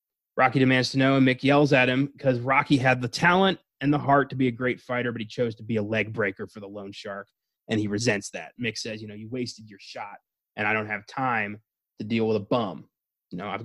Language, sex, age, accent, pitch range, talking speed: English, male, 20-39, American, 115-155 Hz, 260 wpm